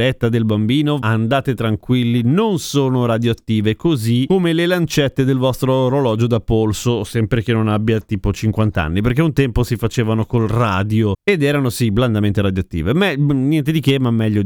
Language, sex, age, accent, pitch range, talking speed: Italian, male, 30-49, native, 120-165 Hz, 170 wpm